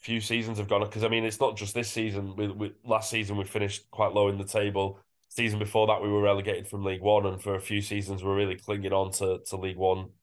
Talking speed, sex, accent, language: 265 wpm, male, British, English